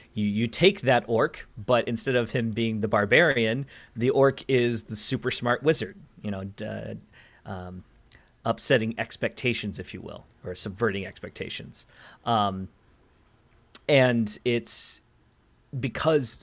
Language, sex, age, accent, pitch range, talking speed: English, male, 30-49, American, 105-125 Hz, 130 wpm